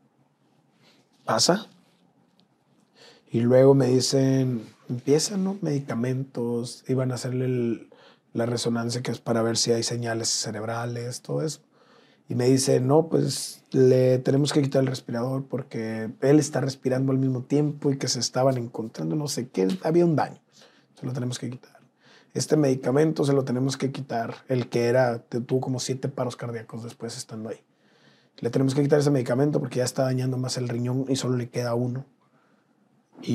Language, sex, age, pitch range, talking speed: English, male, 30-49, 120-140 Hz, 170 wpm